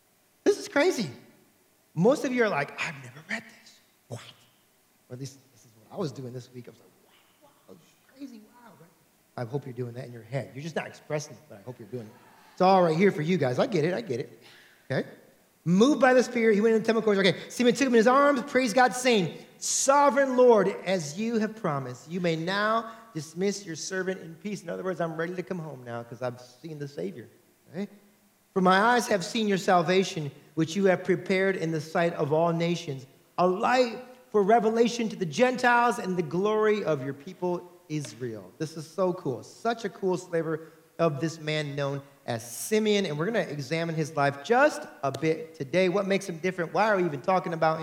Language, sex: English, male